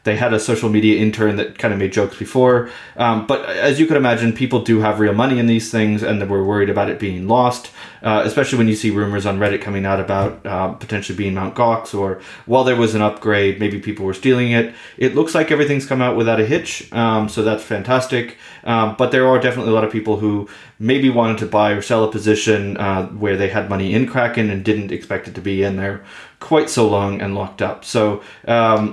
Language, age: English, 30-49